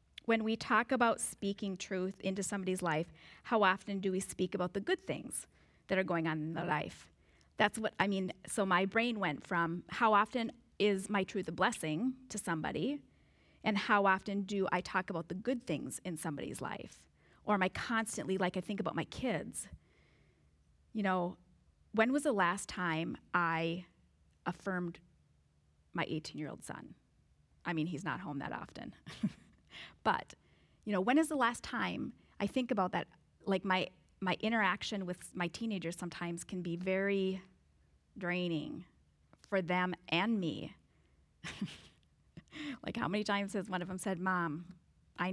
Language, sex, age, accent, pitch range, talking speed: English, female, 30-49, American, 170-210 Hz, 165 wpm